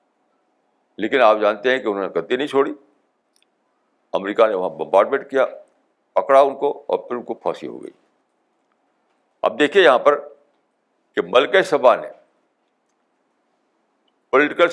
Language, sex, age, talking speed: Urdu, male, 60-79, 145 wpm